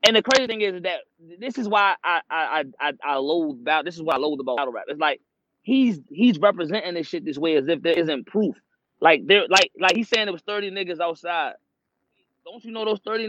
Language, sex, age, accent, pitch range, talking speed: English, male, 20-39, American, 160-220 Hz, 240 wpm